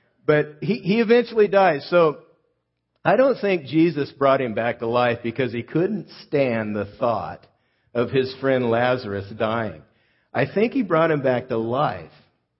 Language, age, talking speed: English, 50-69, 160 wpm